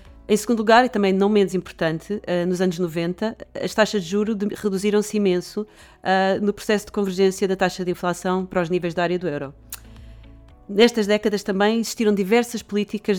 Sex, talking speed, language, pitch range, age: female, 175 wpm, Portuguese, 170-210 Hz, 40-59